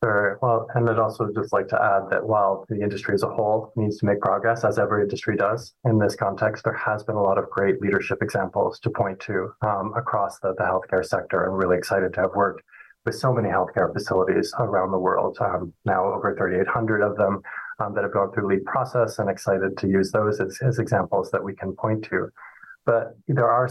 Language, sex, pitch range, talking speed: English, male, 95-115 Hz, 225 wpm